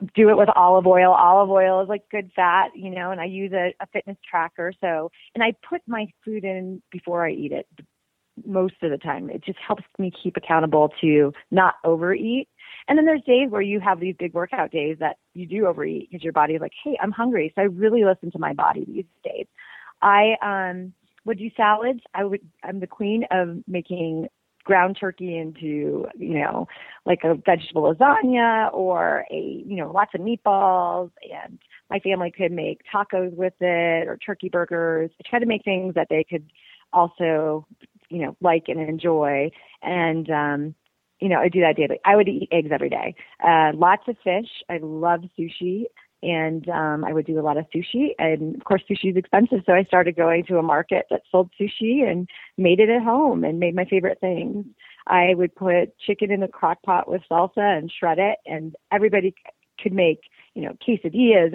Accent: American